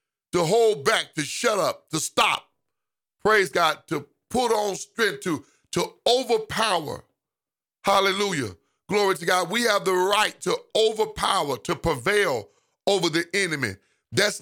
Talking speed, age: 135 wpm, 40-59